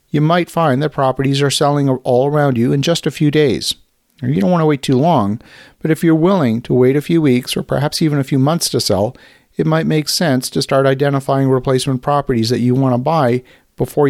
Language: English